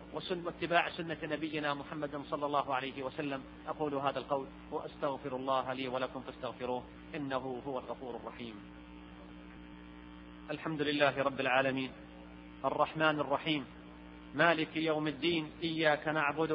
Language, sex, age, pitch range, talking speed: Arabic, male, 40-59, 130-185 Hz, 110 wpm